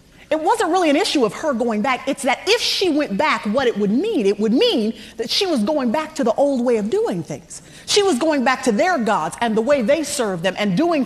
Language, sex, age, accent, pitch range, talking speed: English, female, 30-49, American, 210-315 Hz, 265 wpm